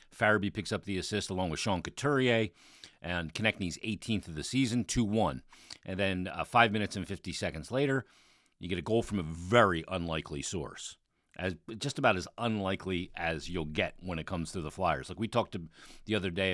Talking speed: 195 wpm